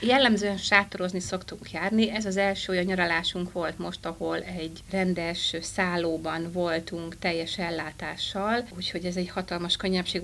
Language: Hungarian